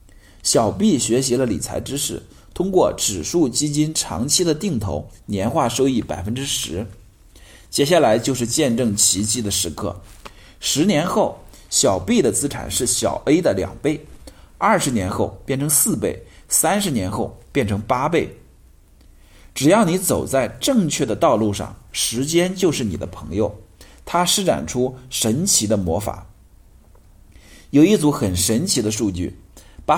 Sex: male